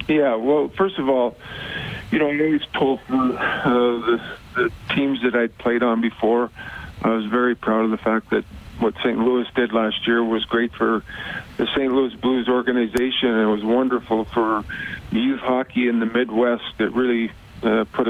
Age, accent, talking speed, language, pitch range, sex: 50-69, American, 185 wpm, English, 115-135 Hz, male